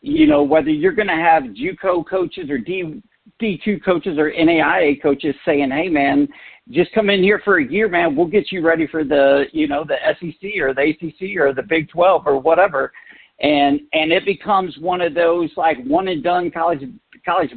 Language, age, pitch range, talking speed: English, 50-69, 155-215 Hz, 200 wpm